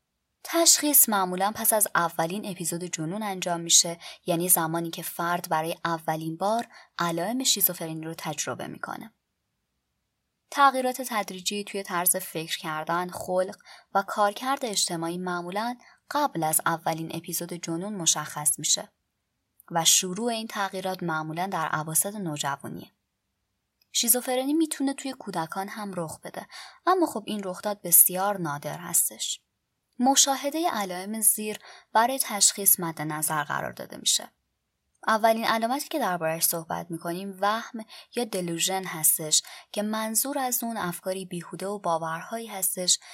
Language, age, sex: Persian, 20-39, male